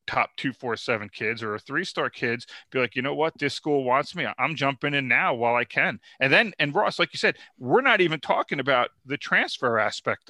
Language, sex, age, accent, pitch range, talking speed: English, male, 40-59, American, 120-145 Hz, 235 wpm